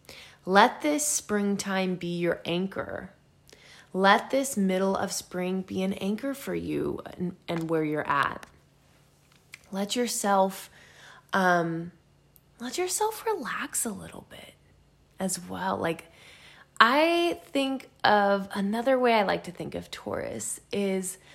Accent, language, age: American, English, 20-39